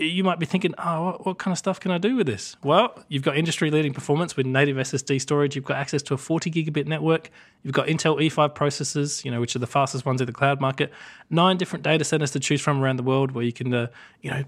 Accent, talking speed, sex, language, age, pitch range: Australian, 255 wpm, male, English, 20-39, 130-155 Hz